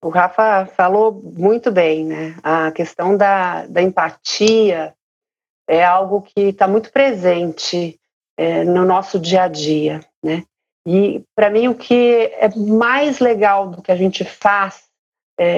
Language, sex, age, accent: Portuguese, female, 40-59, Brazilian